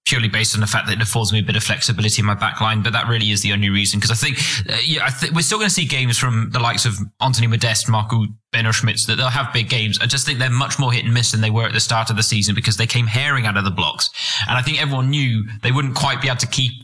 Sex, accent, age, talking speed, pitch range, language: male, British, 20-39, 315 wpm, 110-125 Hz, English